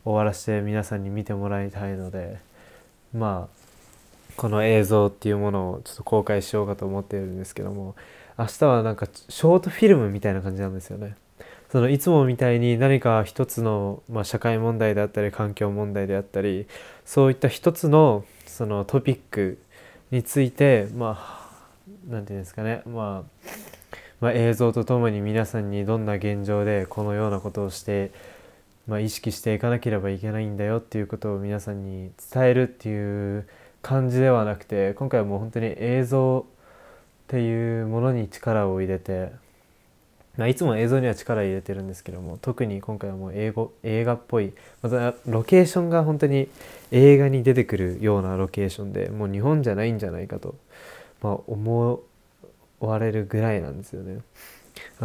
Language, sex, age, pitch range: Japanese, male, 20-39, 100-120 Hz